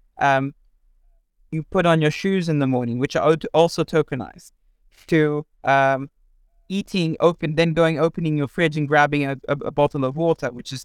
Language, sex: English, male